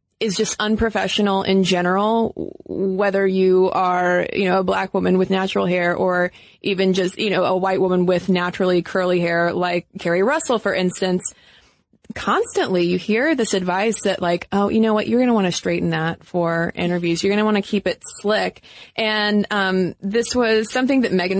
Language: English